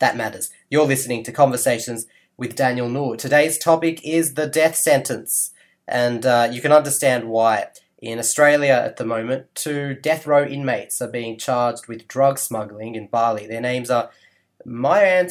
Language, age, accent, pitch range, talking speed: English, 20-39, Australian, 115-145 Hz, 165 wpm